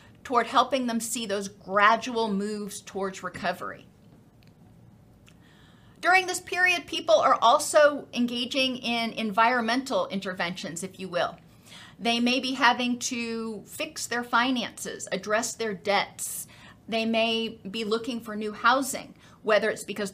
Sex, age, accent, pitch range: female, 40-59, American, 200-240 Hz